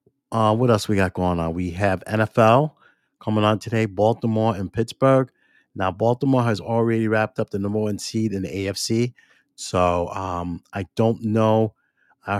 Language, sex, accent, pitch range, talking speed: English, male, American, 100-120 Hz, 170 wpm